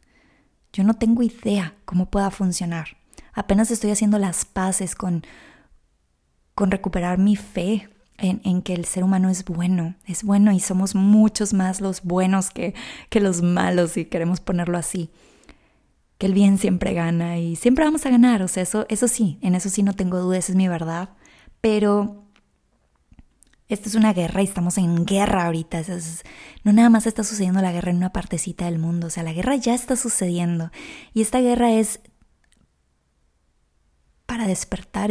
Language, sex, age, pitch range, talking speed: Spanish, female, 20-39, 175-220 Hz, 175 wpm